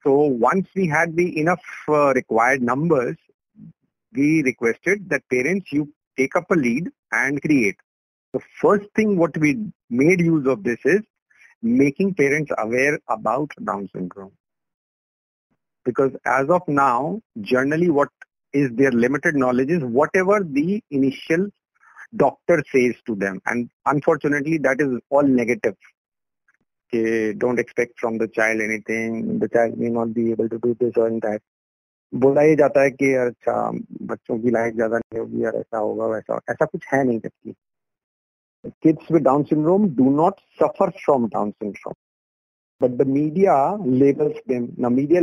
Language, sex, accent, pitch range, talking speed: English, male, Indian, 120-170 Hz, 125 wpm